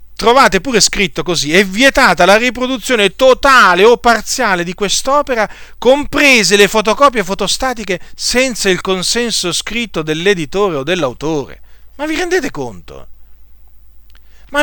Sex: male